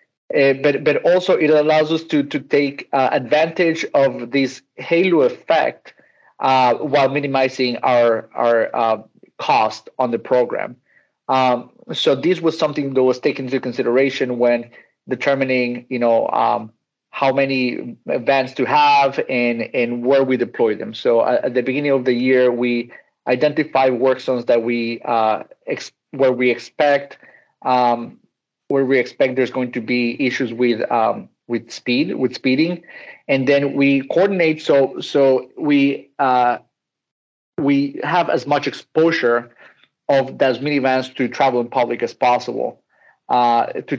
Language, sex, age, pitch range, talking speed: English, male, 30-49, 120-140 Hz, 150 wpm